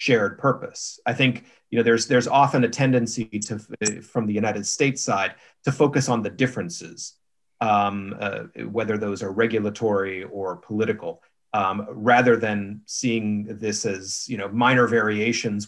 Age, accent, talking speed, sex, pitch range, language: 40-59, American, 155 wpm, male, 105-125 Hz, English